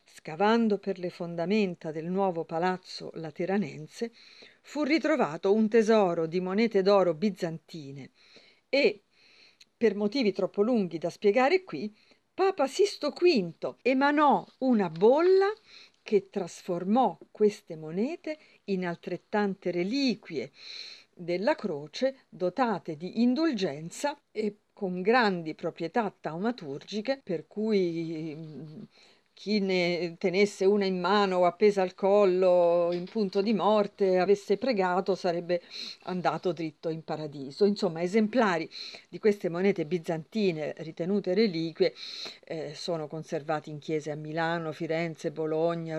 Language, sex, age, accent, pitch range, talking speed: Italian, female, 50-69, native, 165-215 Hz, 115 wpm